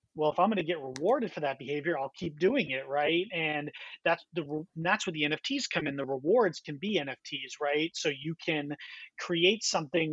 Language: English